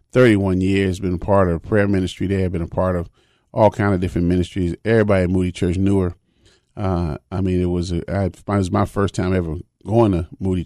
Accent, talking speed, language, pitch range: American, 230 wpm, English, 90-105 Hz